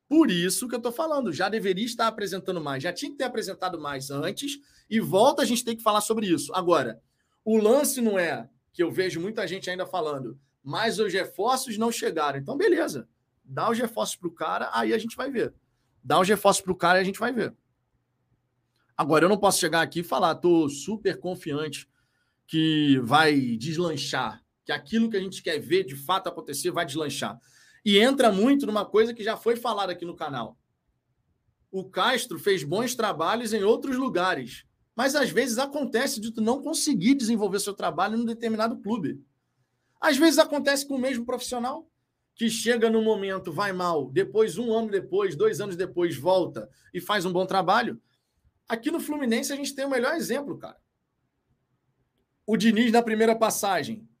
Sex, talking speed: male, 190 wpm